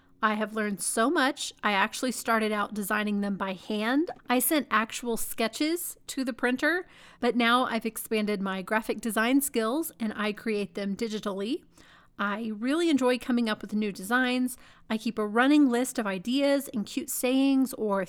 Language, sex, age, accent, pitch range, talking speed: English, female, 30-49, American, 215-255 Hz, 175 wpm